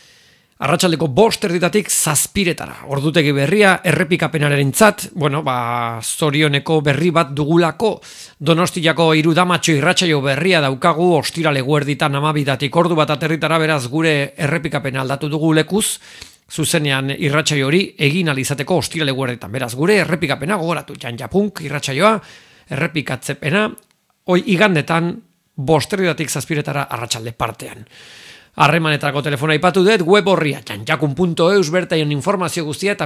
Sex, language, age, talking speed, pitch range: male, English, 40-59, 115 wpm, 145-180 Hz